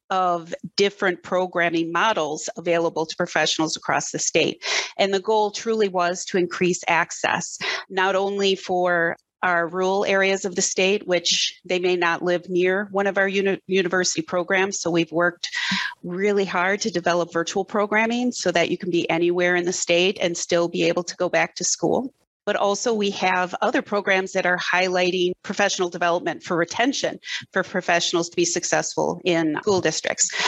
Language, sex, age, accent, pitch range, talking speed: English, female, 30-49, American, 175-195 Hz, 170 wpm